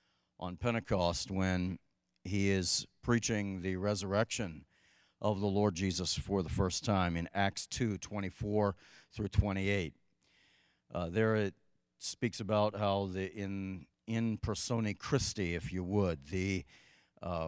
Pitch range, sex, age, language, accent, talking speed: 95-115 Hz, male, 50-69, English, American, 125 wpm